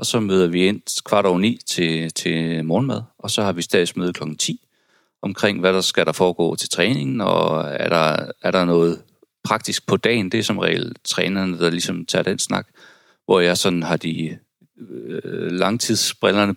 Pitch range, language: 85-100 Hz, Danish